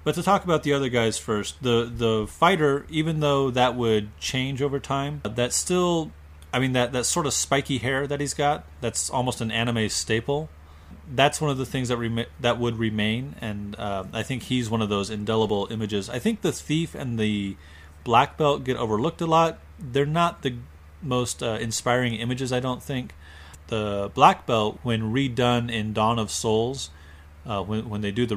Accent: American